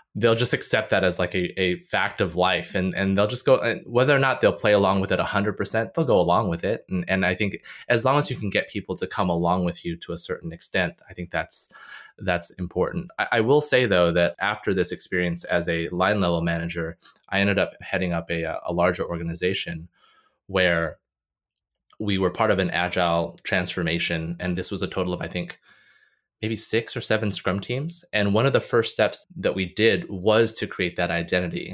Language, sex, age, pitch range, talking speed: English, male, 20-39, 90-105 Hz, 220 wpm